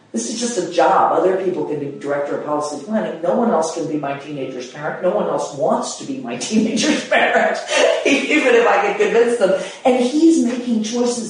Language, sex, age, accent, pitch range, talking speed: English, female, 40-59, American, 155-220 Hz, 210 wpm